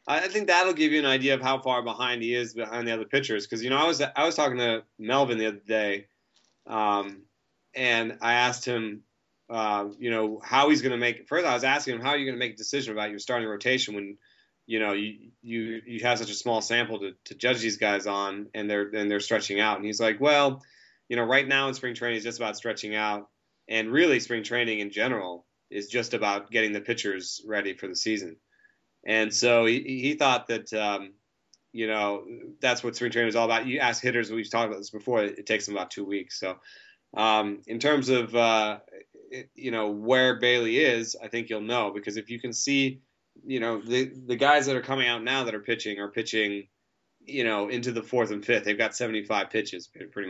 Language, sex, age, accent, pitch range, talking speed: English, male, 30-49, American, 105-125 Hz, 235 wpm